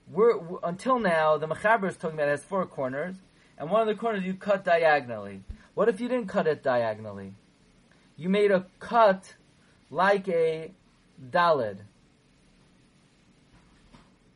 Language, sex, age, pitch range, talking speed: English, male, 30-49, 150-200 Hz, 140 wpm